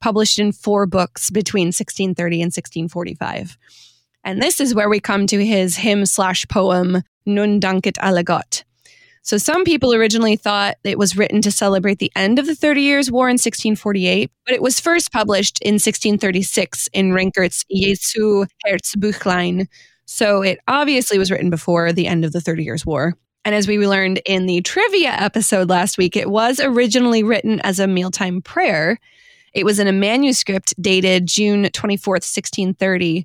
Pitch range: 185-220 Hz